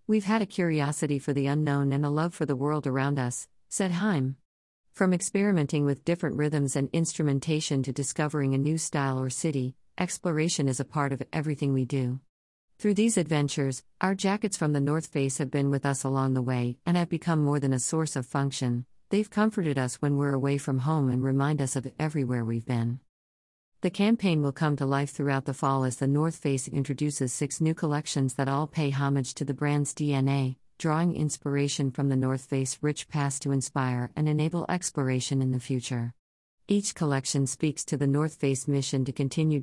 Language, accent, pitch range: English, American, 130-150 Hz